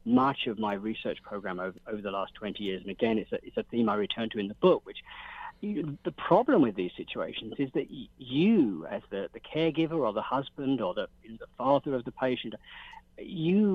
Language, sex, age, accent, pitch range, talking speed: English, male, 50-69, British, 110-160 Hz, 205 wpm